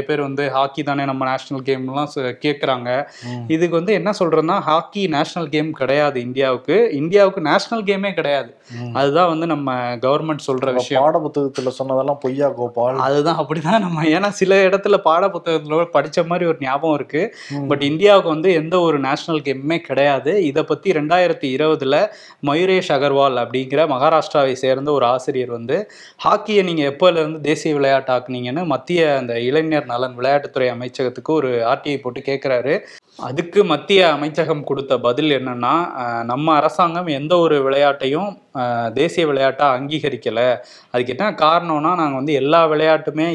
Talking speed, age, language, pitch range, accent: 80 wpm, 20-39, Tamil, 130-160 Hz, native